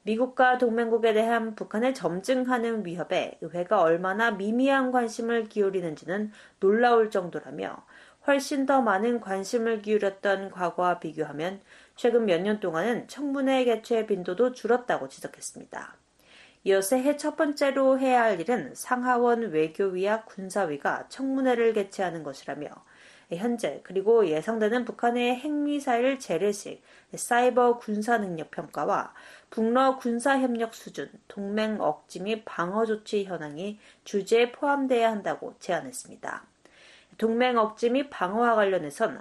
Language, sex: Korean, female